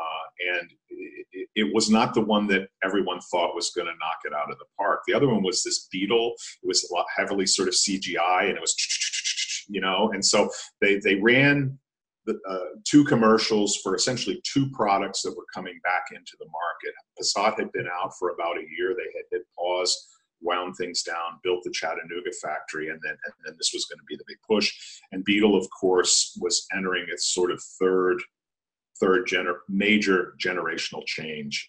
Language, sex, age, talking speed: English, male, 40-59, 190 wpm